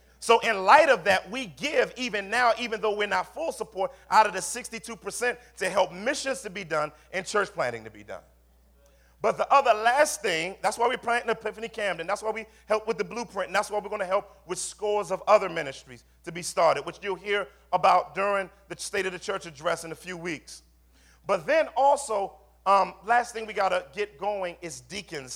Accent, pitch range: American, 175-225 Hz